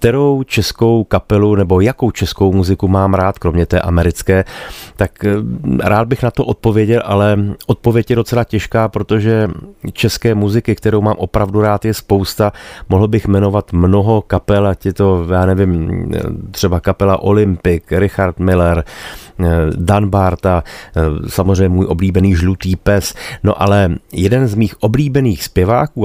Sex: male